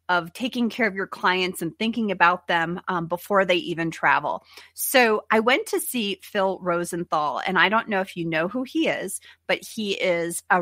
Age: 30-49